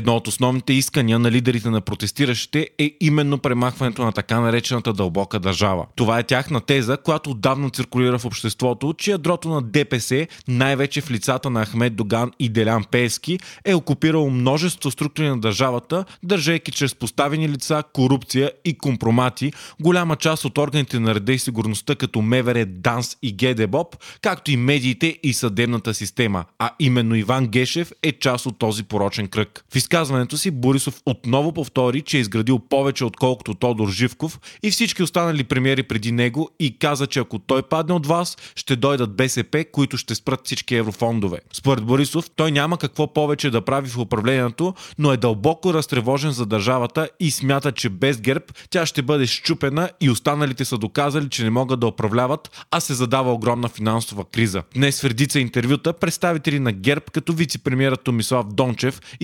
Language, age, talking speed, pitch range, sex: Bulgarian, 30-49, 165 wpm, 120-150 Hz, male